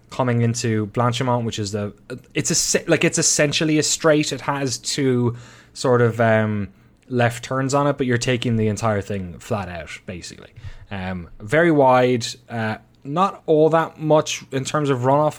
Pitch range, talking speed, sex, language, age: 105-140 Hz, 170 wpm, male, English, 20-39